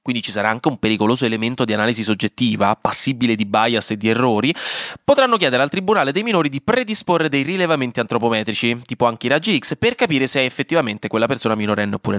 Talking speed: 200 wpm